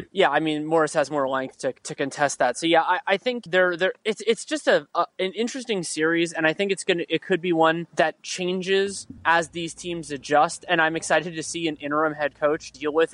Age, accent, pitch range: 20-39, American, 155-190 Hz